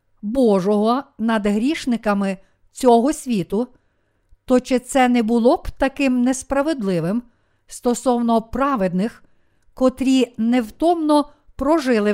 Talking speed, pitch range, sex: 90 wpm, 210-260 Hz, female